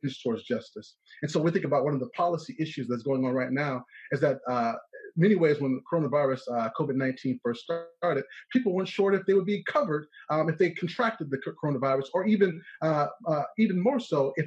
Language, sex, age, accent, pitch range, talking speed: English, male, 30-49, American, 130-170 Hz, 210 wpm